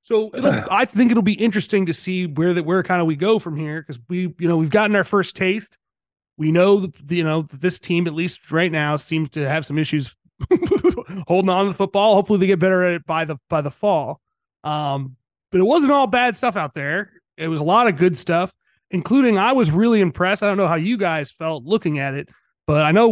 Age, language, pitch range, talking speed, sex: 30-49, English, 160-195 Hz, 240 wpm, male